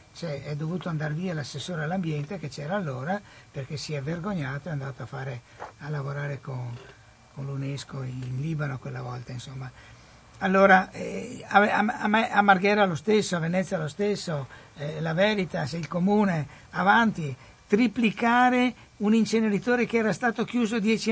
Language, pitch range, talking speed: Italian, 150-210 Hz, 160 wpm